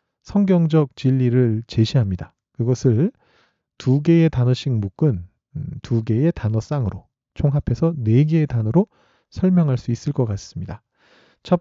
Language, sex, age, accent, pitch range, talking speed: English, male, 40-59, Korean, 115-160 Hz, 110 wpm